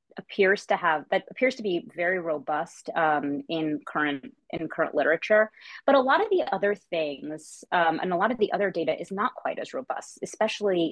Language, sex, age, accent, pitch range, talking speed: English, female, 30-49, American, 160-215 Hz, 200 wpm